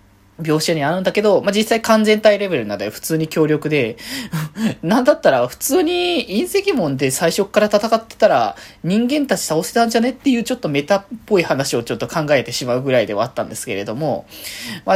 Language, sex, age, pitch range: Japanese, male, 20-39, 125-205 Hz